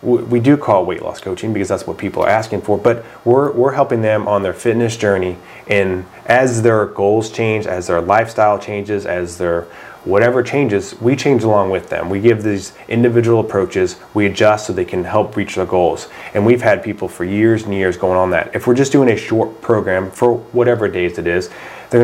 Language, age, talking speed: English, 30-49, 215 wpm